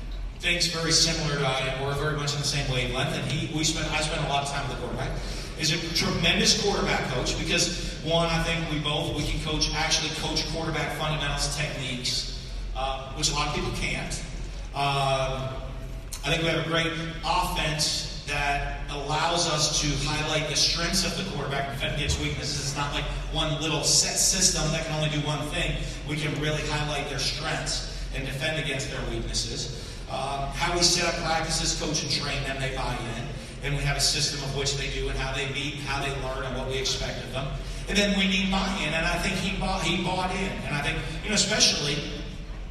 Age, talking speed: 40-59, 210 wpm